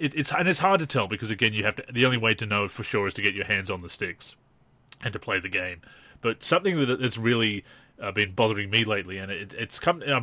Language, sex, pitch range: English, male, 105-140 Hz